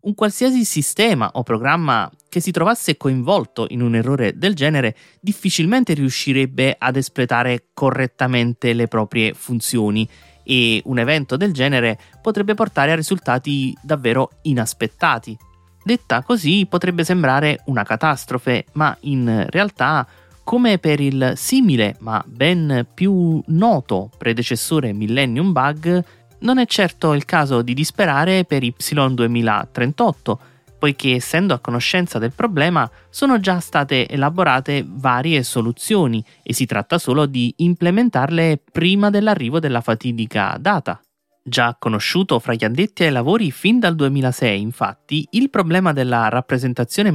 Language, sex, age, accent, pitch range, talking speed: Italian, male, 30-49, native, 120-175 Hz, 125 wpm